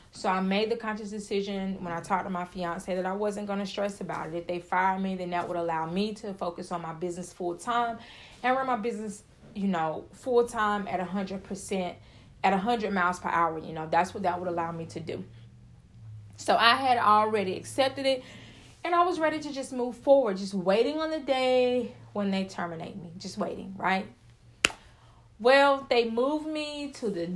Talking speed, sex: 200 wpm, female